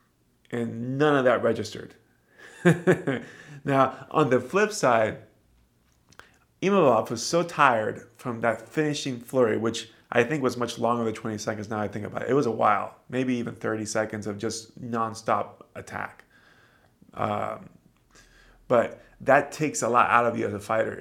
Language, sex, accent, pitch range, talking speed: English, male, American, 115-135 Hz, 160 wpm